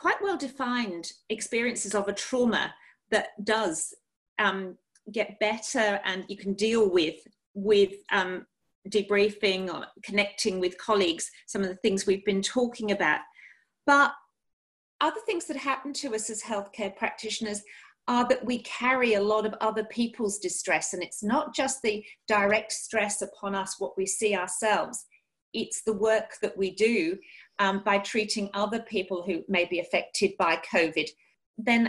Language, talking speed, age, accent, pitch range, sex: English, 155 wpm, 40-59, British, 200-245 Hz, female